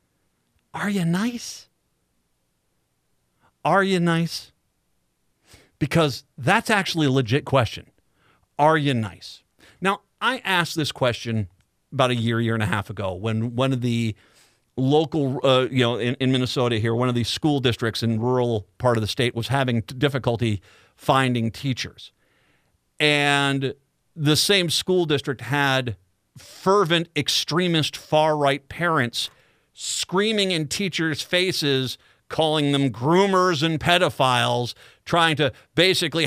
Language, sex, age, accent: English, male, 50-69, American